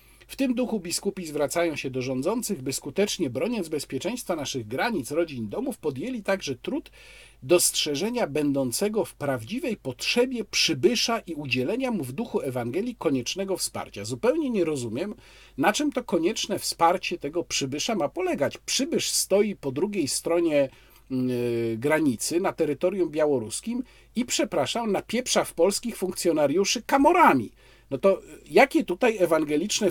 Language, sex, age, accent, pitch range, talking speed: Polish, male, 40-59, native, 135-220 Hz, 130 wpm